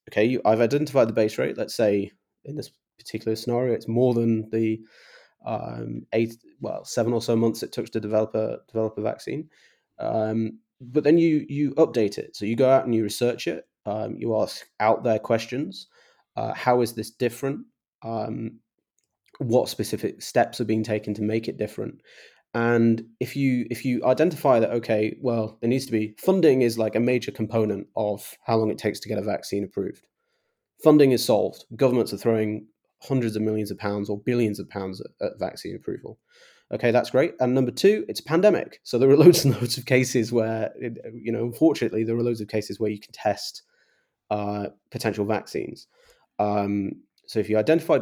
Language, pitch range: English, 110-125 Hz